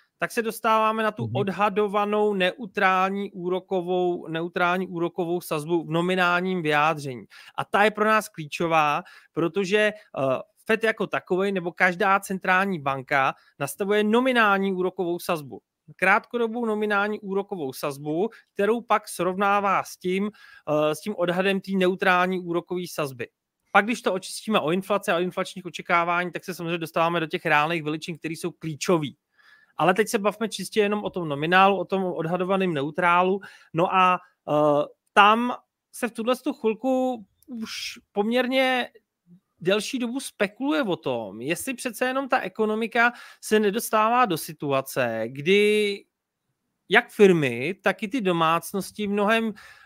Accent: native